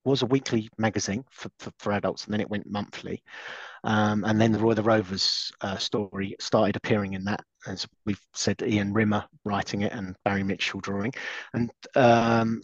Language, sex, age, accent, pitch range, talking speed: English, male, 40-59, British, 105-120 Hz, 185 wpm